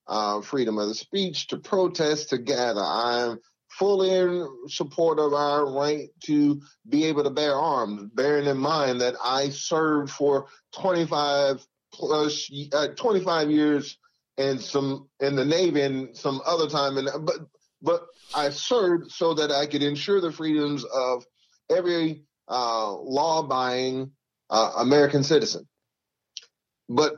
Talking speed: 140 wpm